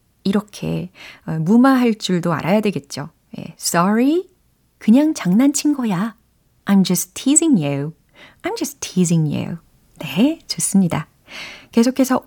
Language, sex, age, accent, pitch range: Korean, female, 30-49, native, 175-280 Hz